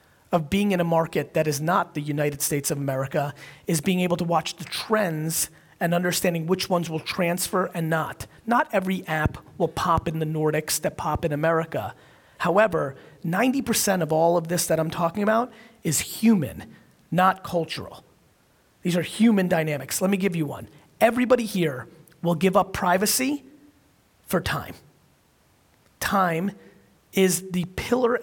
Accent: American